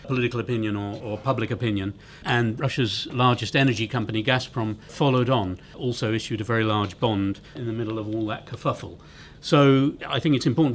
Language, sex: English, male